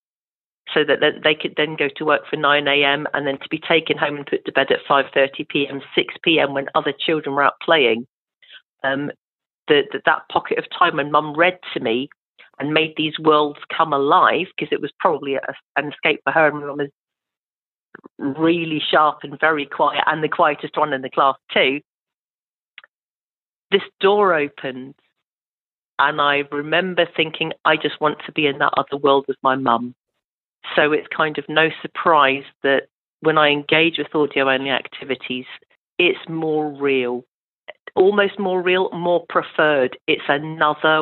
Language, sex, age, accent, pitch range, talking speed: English, female, 40-59, British, 140-160 Hz, 165 wpm